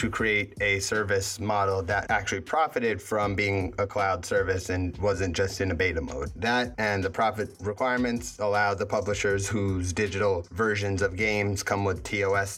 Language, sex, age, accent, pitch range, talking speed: English, male, 30-49, American, 100-125 Hz, 170 wpm